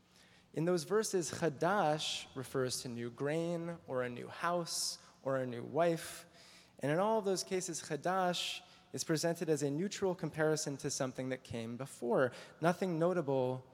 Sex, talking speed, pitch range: male, 155 wpm, 120-165 Hz